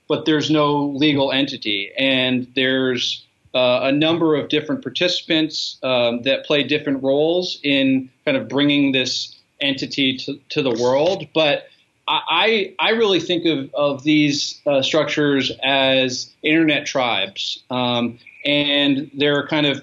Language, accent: English, American